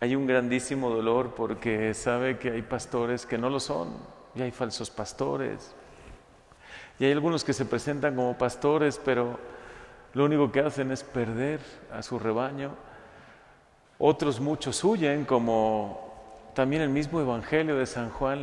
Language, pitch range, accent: Spanish, 115-145 Hz, Mexican